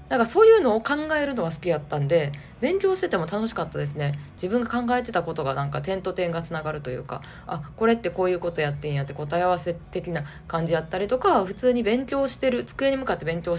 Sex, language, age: female, Japanese, 20-39